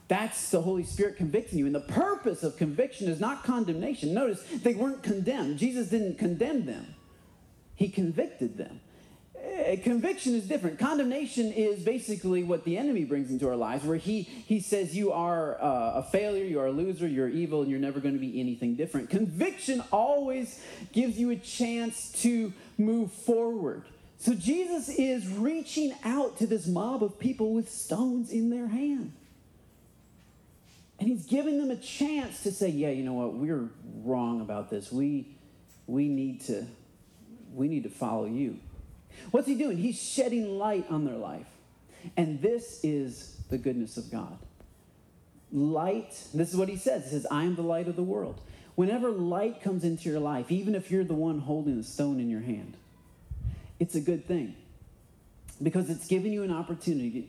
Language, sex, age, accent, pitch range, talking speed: English, male, 40-59, American, 150-235 Hz, 175 wpm